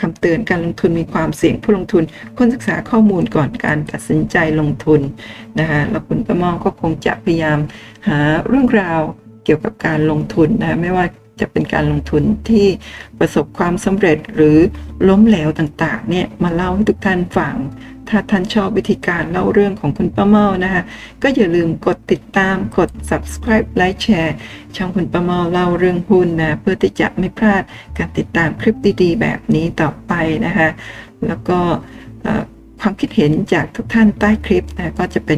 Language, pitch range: Thai, 150-205 Hz